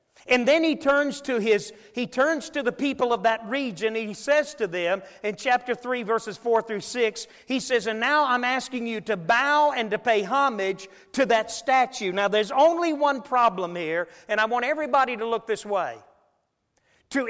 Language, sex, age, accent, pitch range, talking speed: English, male, 40-59, American, 215-270 Hz, 200 wpm